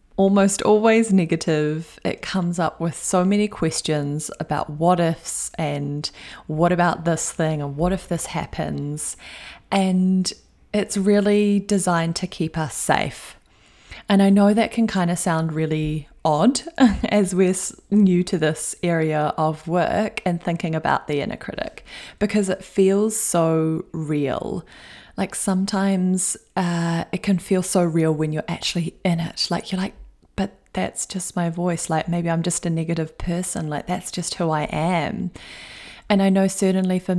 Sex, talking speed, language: female, 160 wpm, English